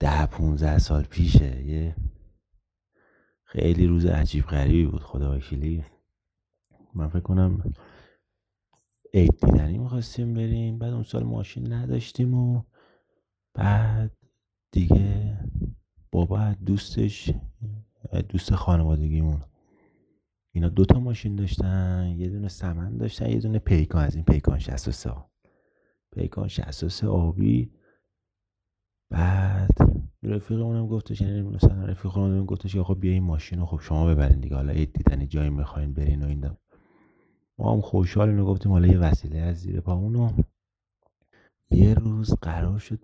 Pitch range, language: 80-100 Hz, Persian